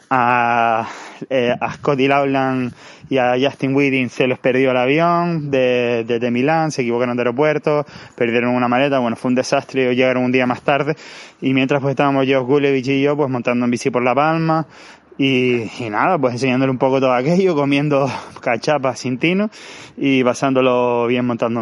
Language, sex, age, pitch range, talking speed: Spanish, male, 20-39, 125-145 Hz, 185 wpm